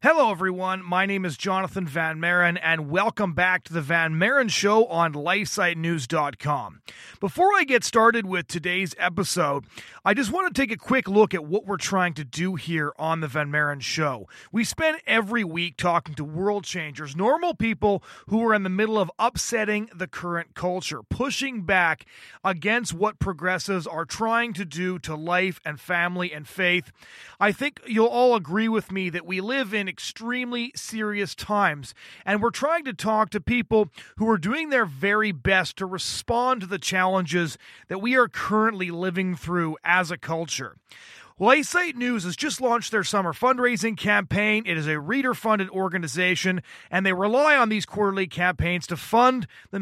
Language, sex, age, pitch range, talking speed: English, male, 30-49, 170-220 Hz, 175 wpm